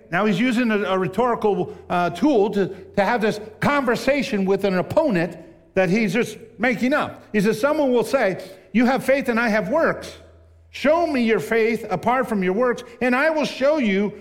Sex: male